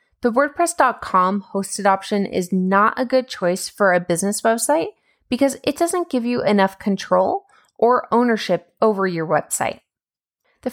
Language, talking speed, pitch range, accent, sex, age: English, 145 wpm, 190-260 Hz, American, female, 20-39